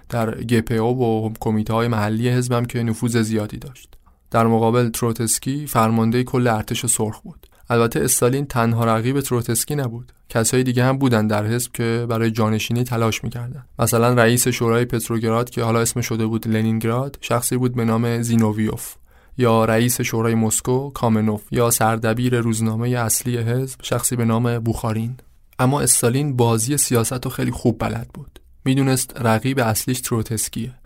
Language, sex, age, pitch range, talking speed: Persian, male, 20-39, 110-125 Hz, 150 wpm